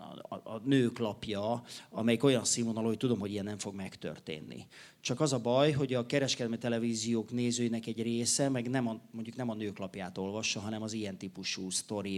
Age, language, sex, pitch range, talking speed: 40-59, Hungarian, male, 105-140 Hz, 175 wpm